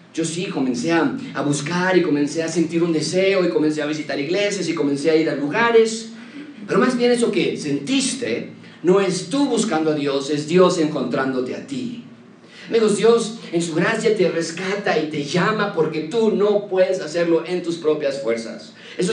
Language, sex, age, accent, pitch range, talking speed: Spanish, male, 40-59, Mexican, 150-220 Hz, 190 wpm